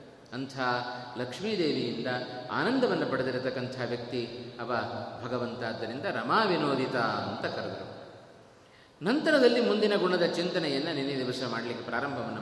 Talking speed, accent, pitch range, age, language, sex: 90 wpm, native, 130-210 Hz, 30-49, Kannada, male